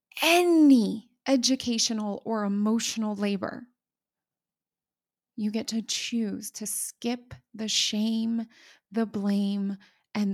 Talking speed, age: 95 wpm, 20-39